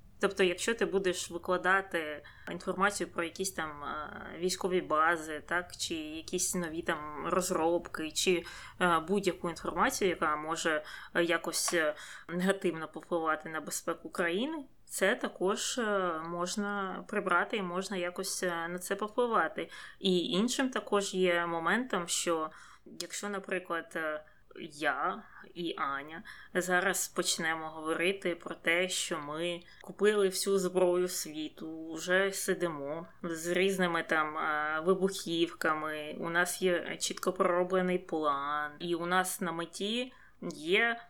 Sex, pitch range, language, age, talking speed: female, 170-200 Hz, Ukrainian, 20-39, 115 wpm